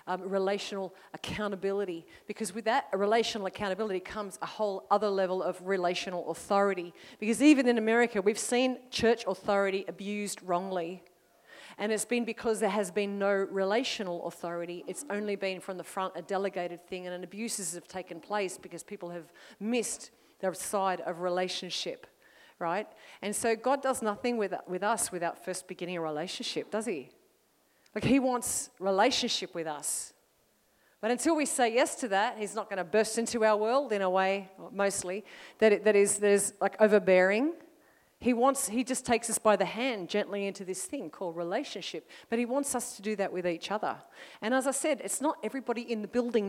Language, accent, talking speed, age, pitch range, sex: English, Australian, 185 wpm, 40-59, 185-230 Hz, female